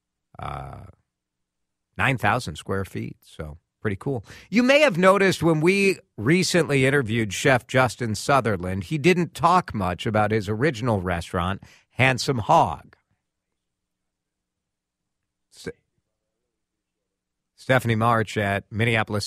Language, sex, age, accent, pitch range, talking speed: English, male, 50-69, American, 95-140 Hz, 100 wpm